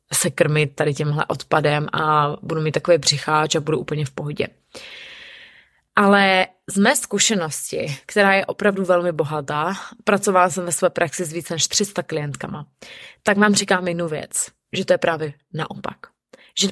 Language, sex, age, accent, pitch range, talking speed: Czech, female, 20-39, native, 160-205 Hz, 160 wpm